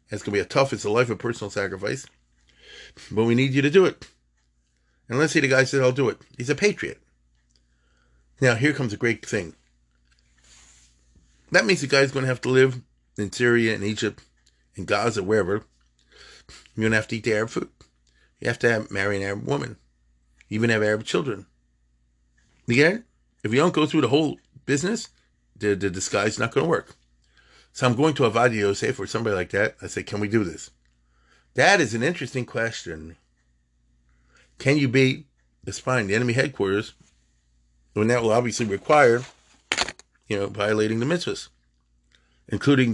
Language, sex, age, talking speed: English, male, 40-59, 185 wpm